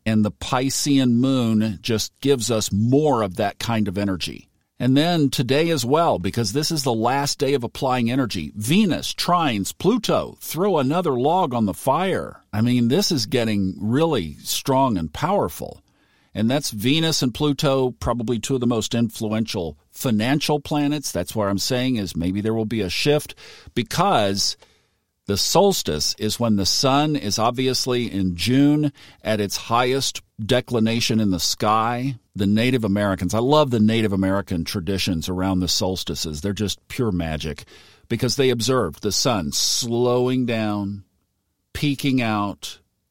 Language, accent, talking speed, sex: English, American, 155 wpm, male